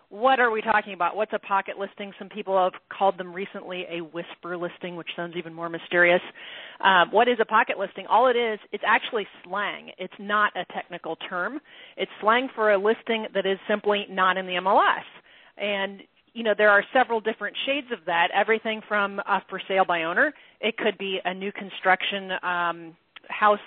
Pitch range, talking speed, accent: 185-230 Hz, 195 wpm, American